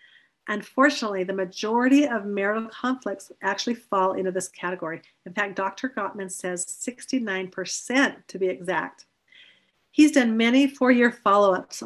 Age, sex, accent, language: 40-59, female, American, English